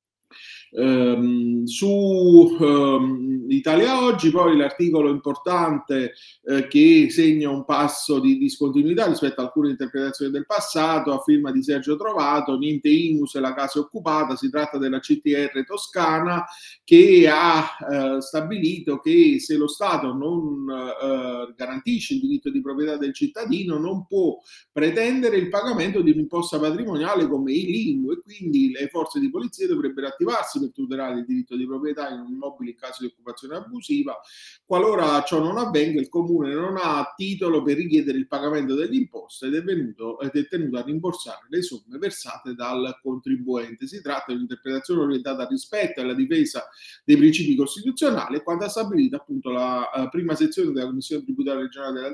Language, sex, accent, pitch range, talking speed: Italian, male, native, 135-220 Hz, 155 wpm